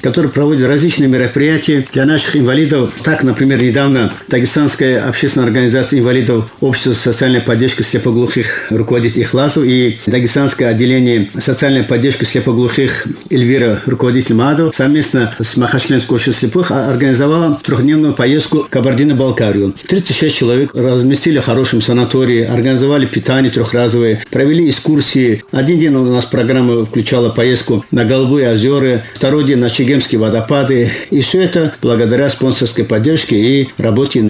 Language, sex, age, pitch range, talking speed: Russian, male, 50-69, 120-145 Hz, 125 wpm